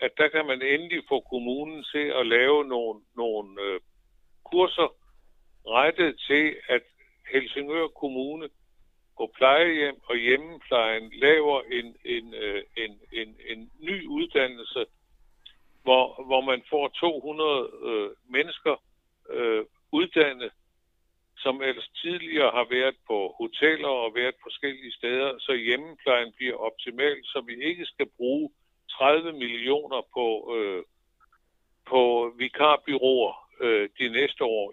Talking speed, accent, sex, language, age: 125 wpm, Indian, male, Danish, 60-79